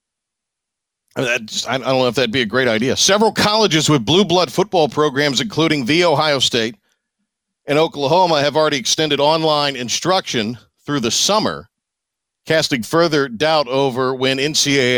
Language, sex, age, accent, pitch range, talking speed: English, male, 50-69, American, 130-175 Hz, 145 wpm